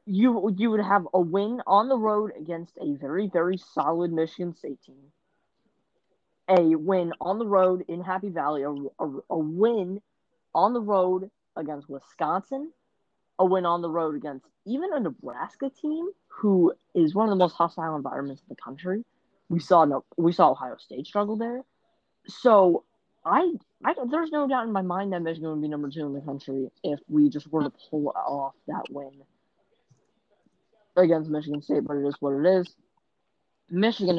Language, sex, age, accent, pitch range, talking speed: English, female, 20-39, American, 150-215 Hz, 175 wpm